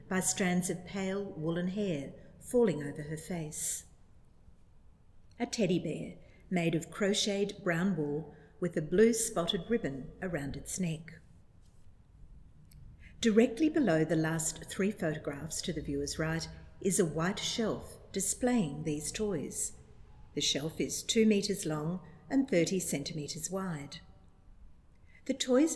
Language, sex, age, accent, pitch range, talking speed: English, female, 50-69, Australian, 155-195 Hz, 130 wpm